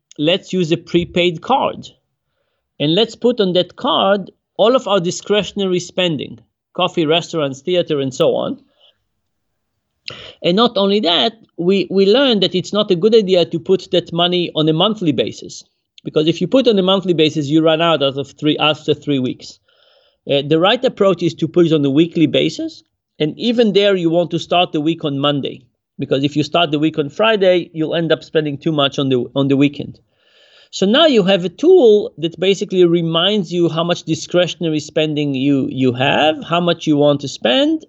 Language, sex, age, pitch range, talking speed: English, male, 40-59, 150-185 Hz, 195 wpm